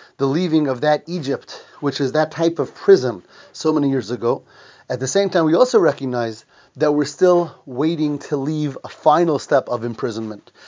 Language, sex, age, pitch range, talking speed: English, male, 30-49, 125-160 Hz, 185 wpm